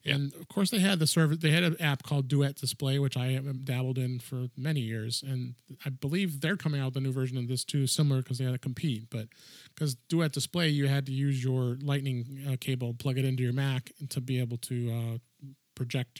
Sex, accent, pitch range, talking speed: male, American, 130-150 Hz, 235 wpm